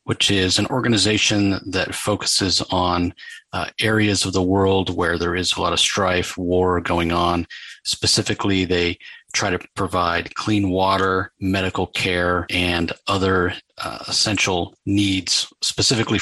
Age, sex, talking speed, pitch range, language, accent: 40-59, male, 135 wpm, 90-105 Hz, English, American